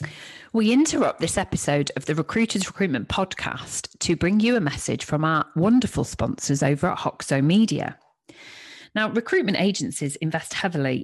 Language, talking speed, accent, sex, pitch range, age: English, 145 wpm, British, female, 140-205 Hz, 40-59